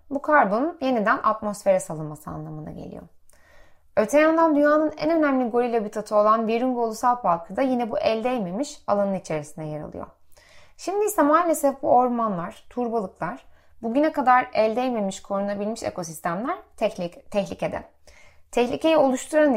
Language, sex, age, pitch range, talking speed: Turkish, female, 30-49, 190-285 Hz, 130 wpm